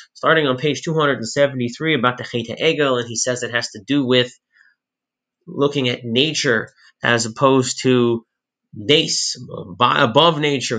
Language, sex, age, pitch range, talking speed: English, male, 30-49, 125-150 Hz, 140 wpm